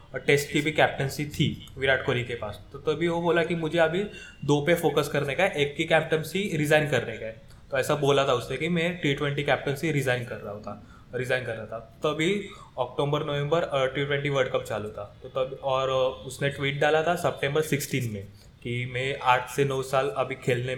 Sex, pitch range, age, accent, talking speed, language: male, 125-150 Hz, 20-39, native, 210 wpm, Hindi